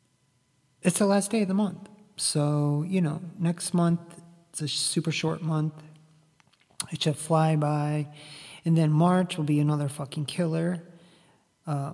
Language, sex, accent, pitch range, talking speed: English, male, American, 150-175 Hz, 150 wpm